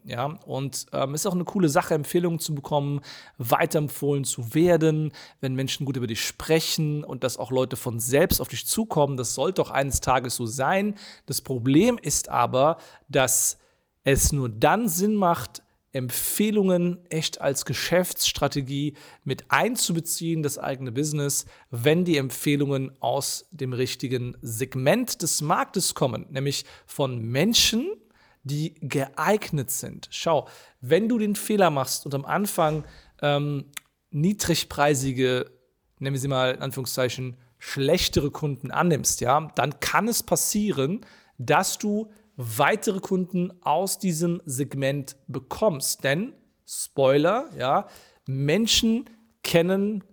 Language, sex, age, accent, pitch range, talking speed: German, male, 40-59, German, 135-170 Hz, 130 wpm